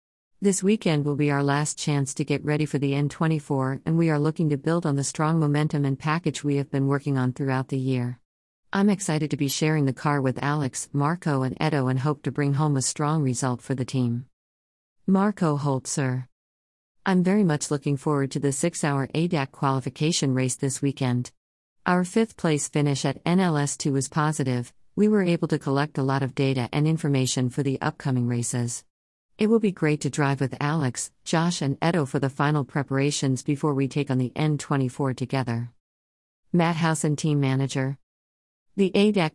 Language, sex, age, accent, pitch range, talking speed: English, female, 50-69, American, 130-155 Hz, 190 wpm